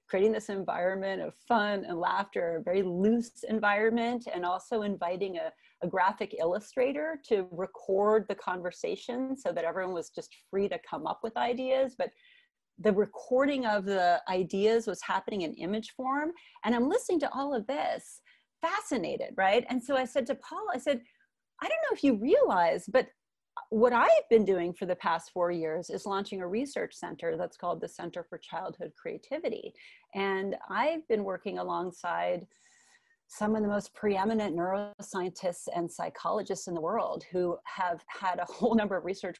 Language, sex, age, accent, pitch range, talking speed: English, female, 30-49, American, 180-255 Hz, 175 wpm